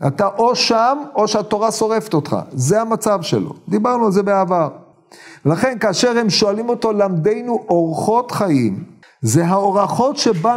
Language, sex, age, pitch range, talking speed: Hebrew, male, 50-69, 150-215 Hz, 140 wpm